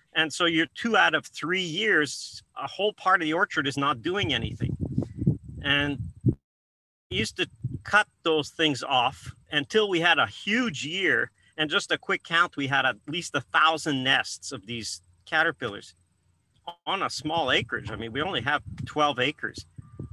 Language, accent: English, American